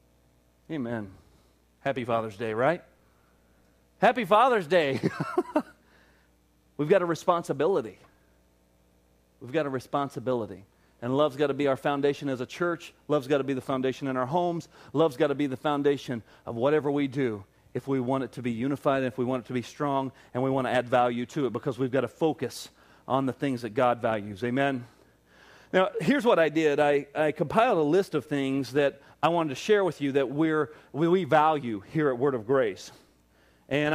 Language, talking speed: English, 190 wpm